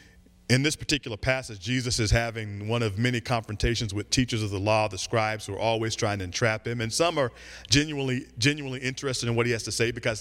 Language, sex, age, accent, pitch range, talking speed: English, male, 40-59, American, 110-140 Hz, 225 wpm